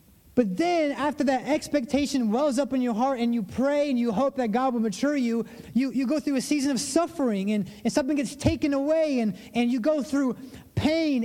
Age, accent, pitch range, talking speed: 30-49, American, 210-265 Hz, 220 wpm